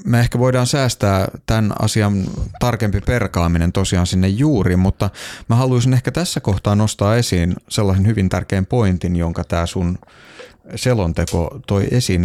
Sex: male